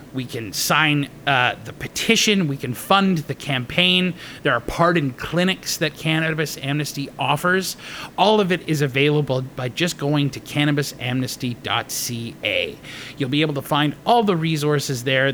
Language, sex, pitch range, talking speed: English, male, 135-190 Hz, 150 wpm